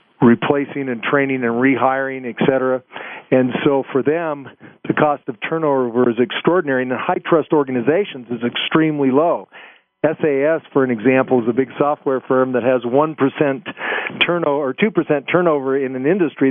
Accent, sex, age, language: American, male, 50-69, English